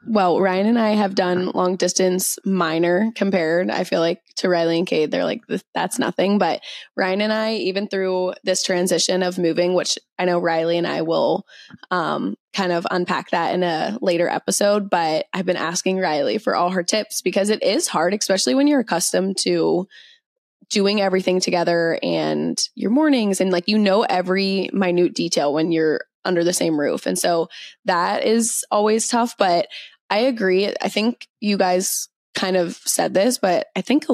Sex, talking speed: female, 185 wpm